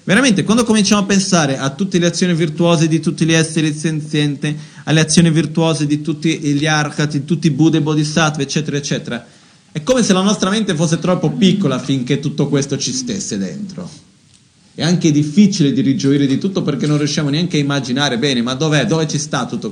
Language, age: Italian, 40-59